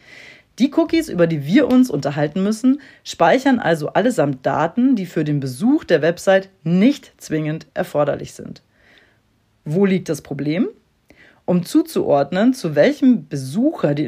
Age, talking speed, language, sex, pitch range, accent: 40-59, 135 wpm, German, female, 155-235 Hz, German